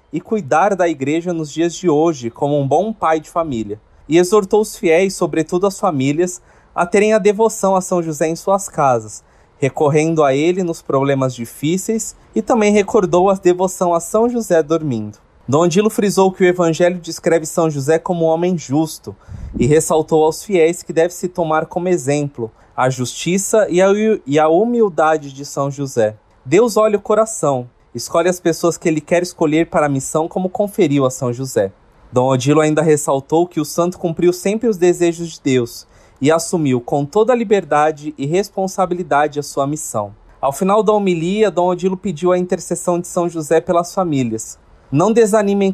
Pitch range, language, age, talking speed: 145-185 Hz, Portuguese, 20-39, 180 wpm